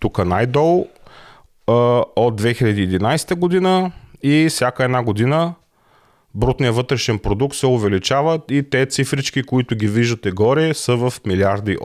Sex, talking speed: male, 120 wpm